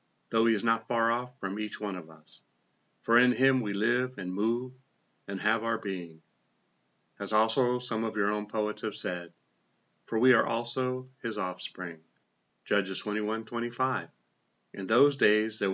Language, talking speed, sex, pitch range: English, 165 wpm, male, 95-115 Hz